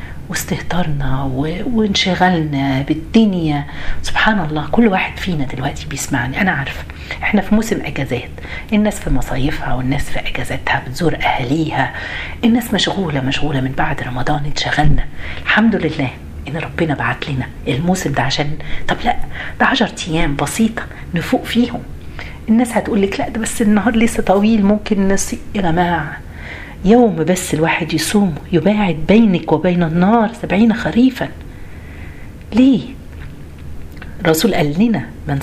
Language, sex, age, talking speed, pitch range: Arabic, female, 40-59, 125 wpm, 140-210 Hz